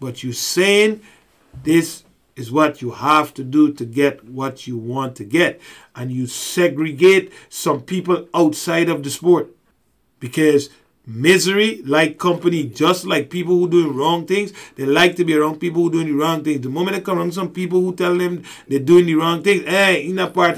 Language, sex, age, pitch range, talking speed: English, male, 50-69, 140-180 Hz, 200 wpm